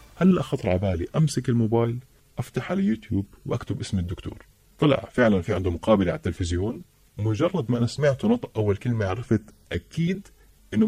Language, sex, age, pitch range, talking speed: Arabic, male, 30-49, 95-125 Hz, 150 wpm